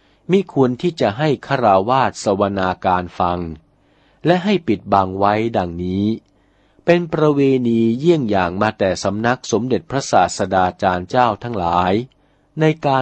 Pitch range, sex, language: 95-140 Hz, male, Thai